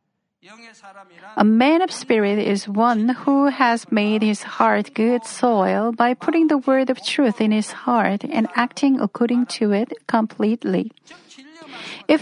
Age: 40-59